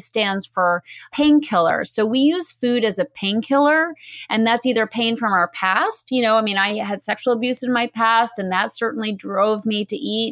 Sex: female